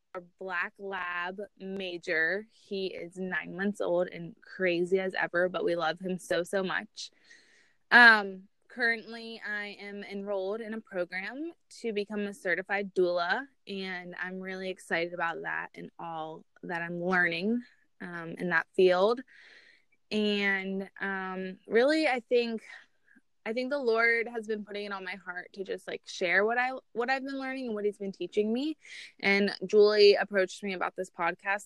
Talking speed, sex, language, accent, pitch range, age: 165 wpm, female, English, American, 180-210 Hz, 20-39